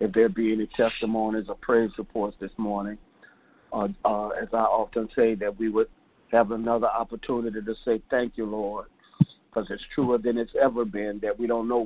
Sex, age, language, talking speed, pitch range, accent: male, 50-69, English, 190 wpm, 115-135 Hz, American